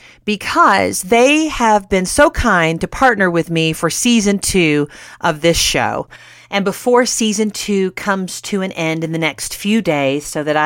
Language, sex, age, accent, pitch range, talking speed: English, female, 40-59, American, 155-220 Hz, 175 wpm